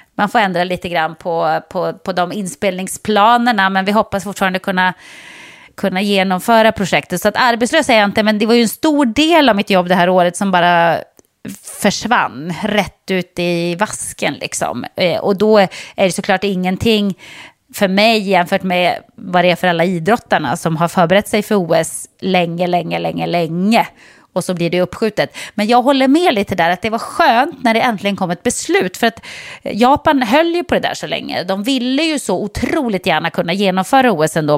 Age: 30-49